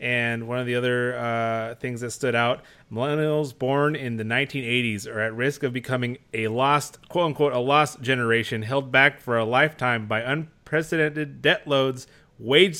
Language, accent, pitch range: English, American, 120-145 Hz